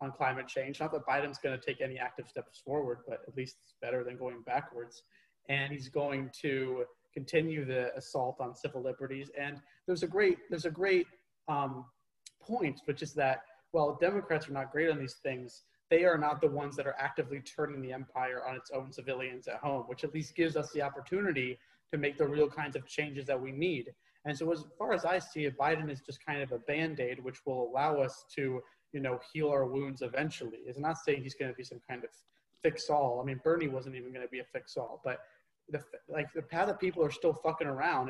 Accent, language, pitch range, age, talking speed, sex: American, English, 130-155 Hz, 30-49, 225 wpm, male